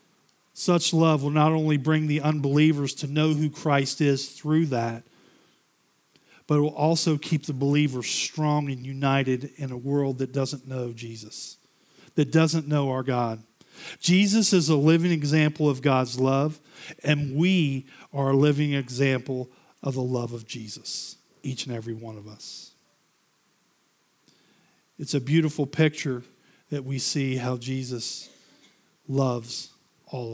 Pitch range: 130-150 Hz